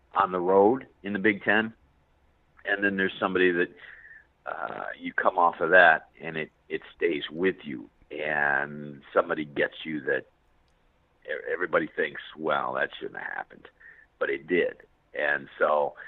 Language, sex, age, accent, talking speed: English, male, 50-69, American, 155 wpm